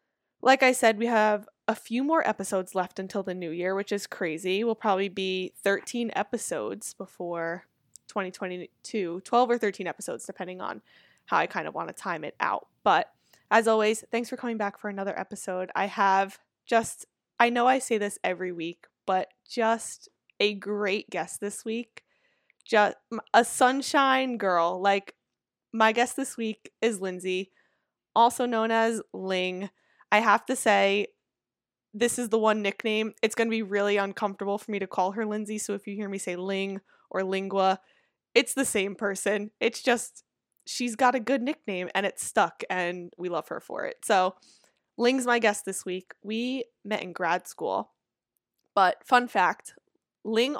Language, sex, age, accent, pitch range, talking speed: English, female, 20-39, American, 190-235 Hz, 175 wpm